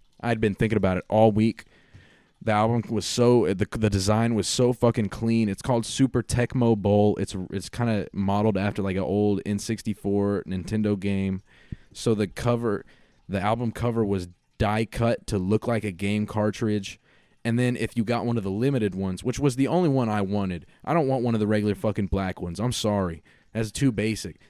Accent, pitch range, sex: American, 100-120 Hz, male